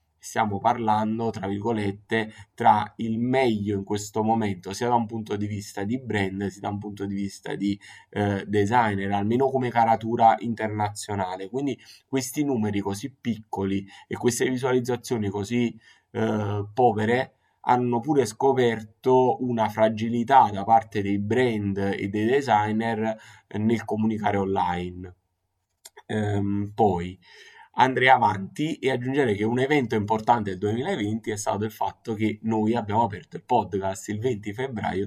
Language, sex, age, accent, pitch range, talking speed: Italian, male, 20-39, native, 100-115 Hz, 140 wpm